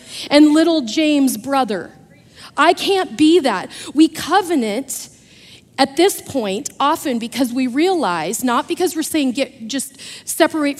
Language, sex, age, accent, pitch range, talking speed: English, female, 40-59, American, 245-305 Hz, 135 wpm